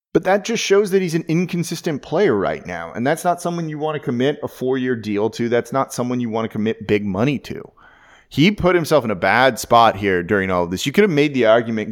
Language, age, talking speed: English, 30-49, 255 wpm